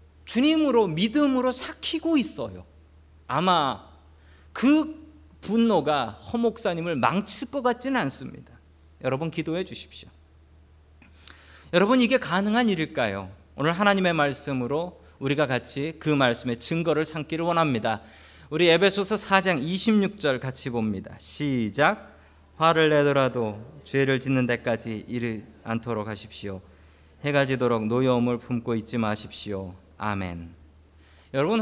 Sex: male